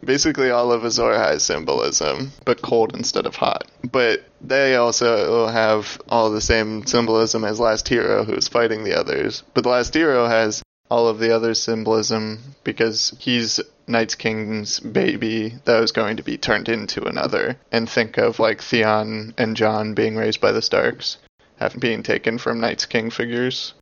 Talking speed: 175 wpm